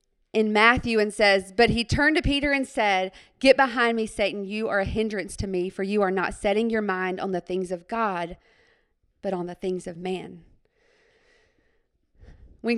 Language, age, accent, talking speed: English, 40-59, American, 190 wpm